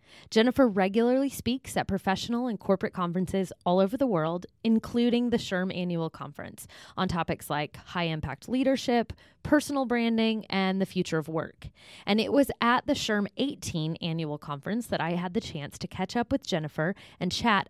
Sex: female